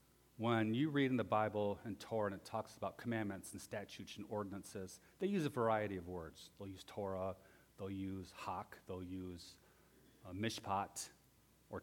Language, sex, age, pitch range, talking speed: English, male, 40-59, 95-125 Hz, 170 wpm